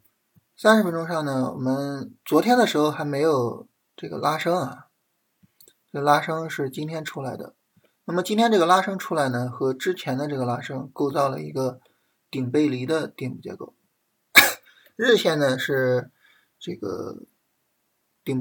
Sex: male